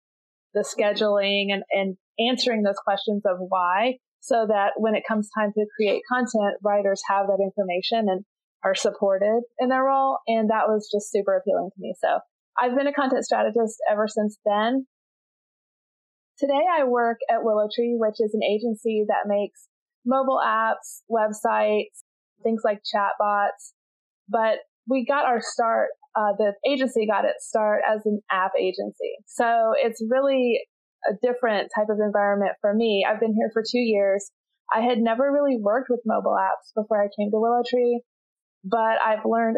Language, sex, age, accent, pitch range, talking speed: English, female, 30-49, American, 205-235 Hz, 165 wpm